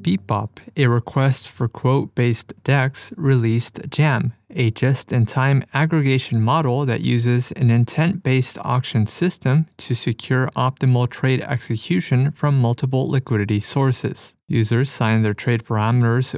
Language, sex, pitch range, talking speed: English, male, 115-140 Hz, 115 wpm